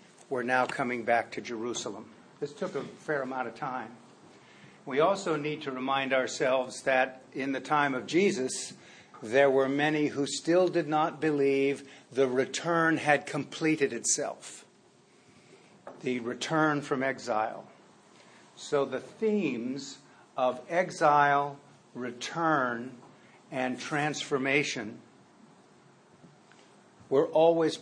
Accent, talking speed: American, 110 wpm